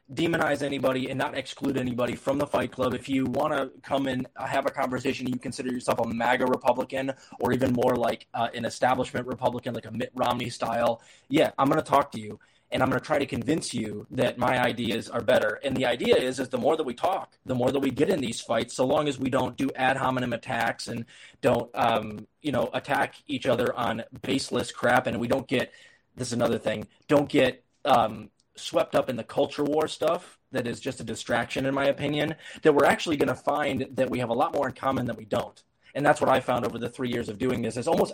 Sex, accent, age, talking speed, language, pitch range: male, American, 20-39, 240 wpm, English, 120-135 Hz